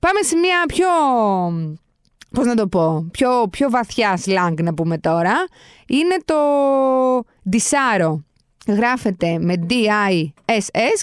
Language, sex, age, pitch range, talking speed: Greek, female, 20-39, 190-270 Hz, 115 wpm